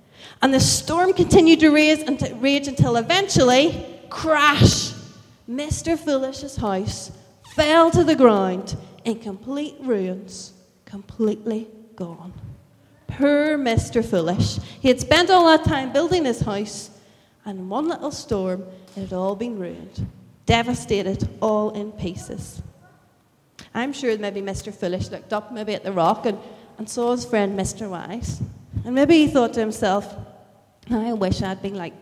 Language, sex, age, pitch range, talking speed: English, female, 30-49, 195-280 Hz, 140 wpm